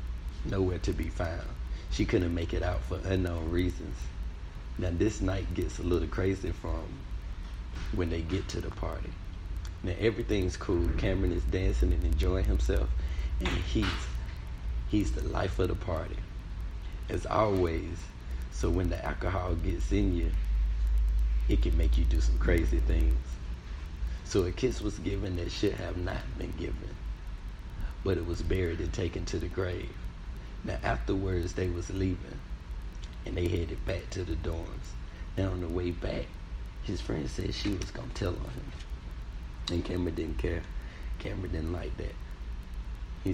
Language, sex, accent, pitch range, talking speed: English, male, American, 65-90 Hz, 160 wpm